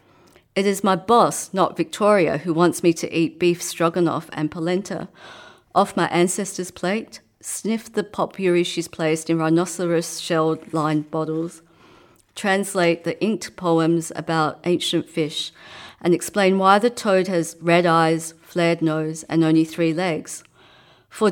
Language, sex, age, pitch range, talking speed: English, female, 40-59, 160-185 Hz, 140 wpm